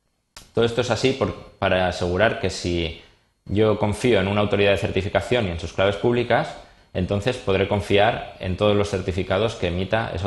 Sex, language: male, Spanish